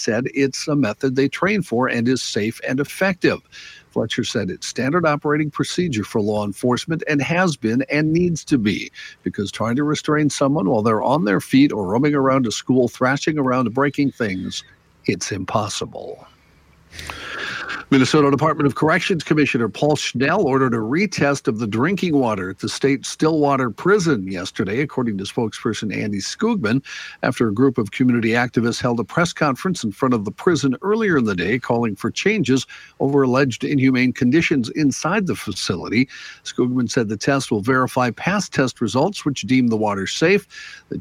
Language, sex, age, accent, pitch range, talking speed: English, male, 60-79, American, 115-150 Hz, 175 wpm